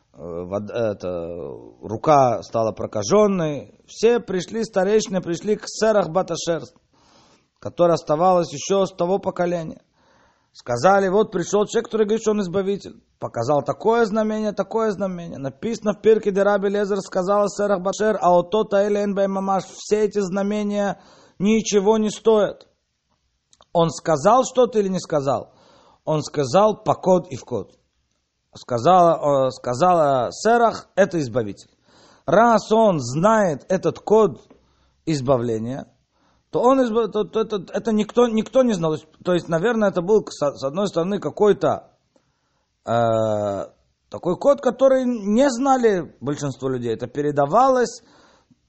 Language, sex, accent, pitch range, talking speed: Russian, male, native, 145-215 Hz, 125 wpm